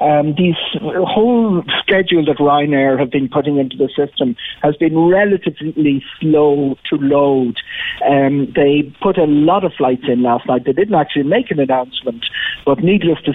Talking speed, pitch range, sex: 165 wpm, 135-160 Hz, male